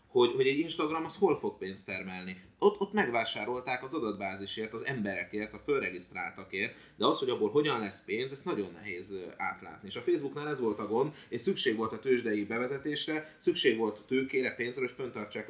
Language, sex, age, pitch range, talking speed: Hungarian, male, 30-49, 95-130 Hz, 190 wpm